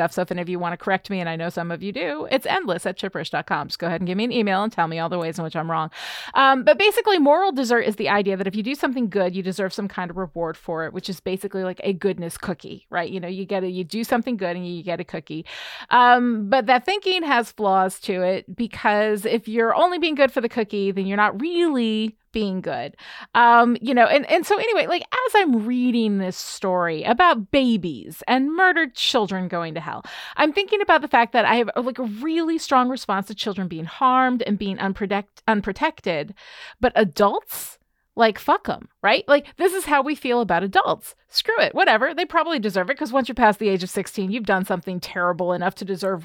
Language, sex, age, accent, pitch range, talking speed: English, female, 30-49, American, 185-265 Hz, 235 wpm